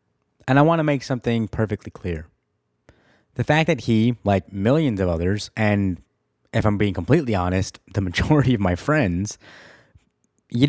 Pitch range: 95-125 Hz